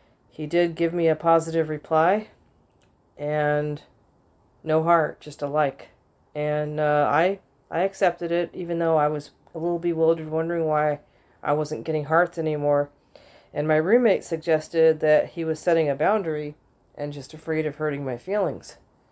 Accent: American